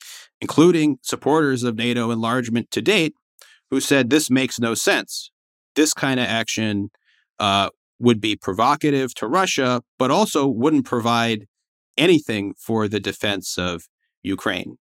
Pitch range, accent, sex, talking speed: 100-130 Hz, American, male, 135 wpm